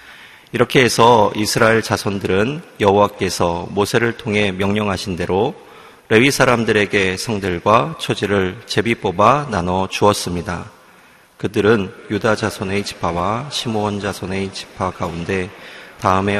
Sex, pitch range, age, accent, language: male, 95-110 Hz, 30-49, native, Korean